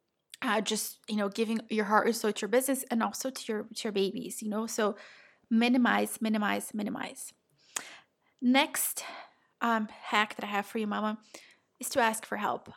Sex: female